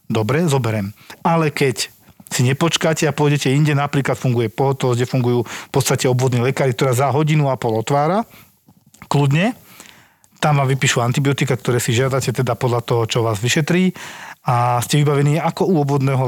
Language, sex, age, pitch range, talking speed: Slovak, male, 40-59, 120-155 Hz, 160 wpm